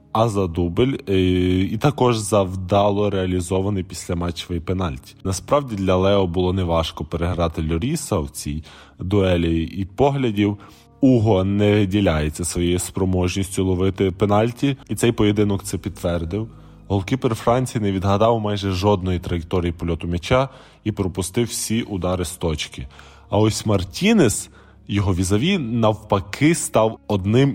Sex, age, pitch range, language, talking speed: male, 20-39, 95-115 Hz, Ukrainian, 120 wpm